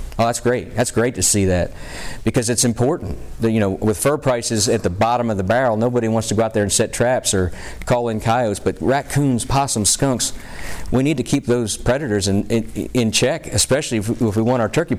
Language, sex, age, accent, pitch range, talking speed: English, male, 50-69, American, 100-130 Hz, 220 wpm